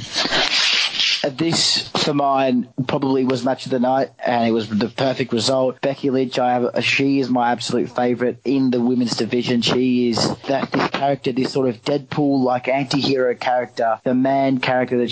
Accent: Australian